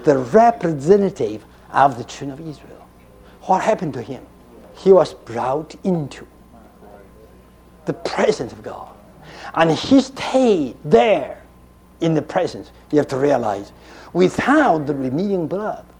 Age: 60-79